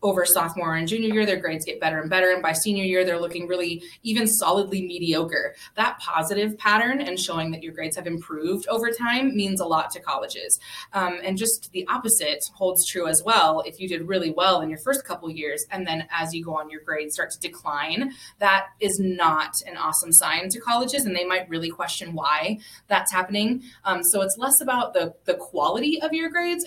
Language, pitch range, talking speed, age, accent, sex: English, 165-220 Hz, 215 wpm, 20-39, American, female